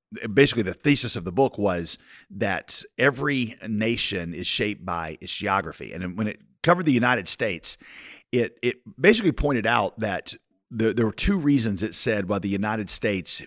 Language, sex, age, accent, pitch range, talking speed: English, male, 50-69, American, 95-140 Hz, 175 wpm